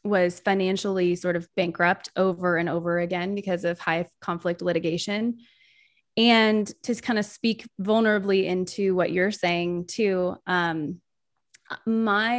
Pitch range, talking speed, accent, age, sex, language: 180-215 Hz, 130 wpm, American, 20-39, female, English